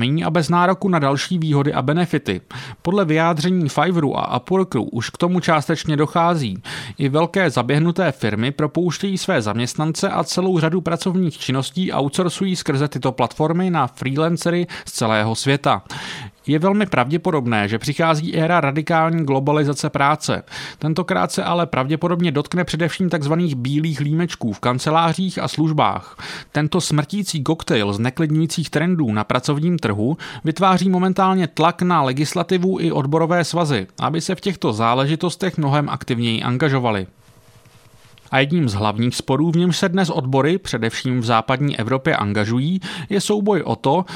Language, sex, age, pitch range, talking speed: English, male, 30-49, 135-180 Hz, 145 wpm